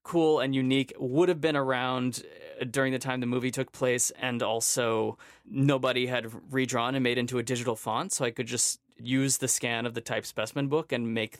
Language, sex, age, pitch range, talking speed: English, male, 20-39, 125-150 Hz, 205 wpm